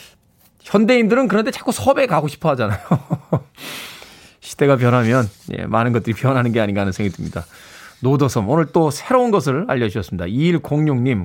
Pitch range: 120-195 Hz